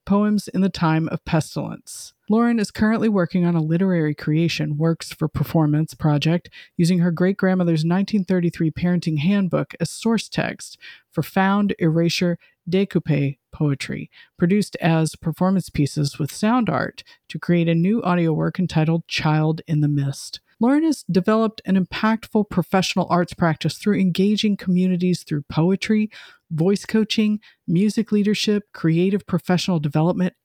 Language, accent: English, American